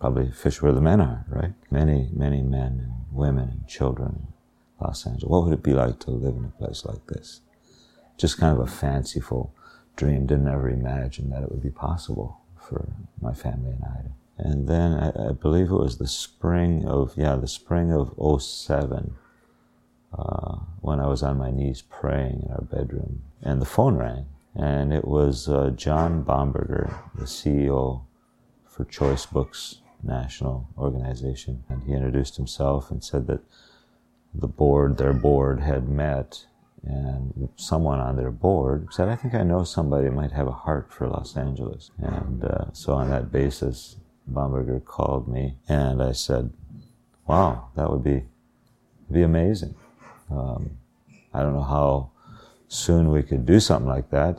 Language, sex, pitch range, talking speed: English, male, 65-75 Hz, 170 wpm